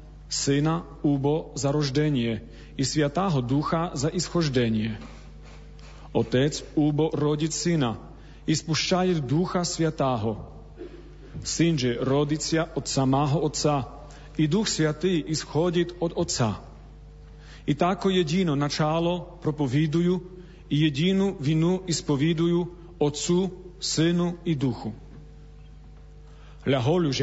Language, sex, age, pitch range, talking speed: Slovak, male, 40-59, 125-165 Hz, 90 wpm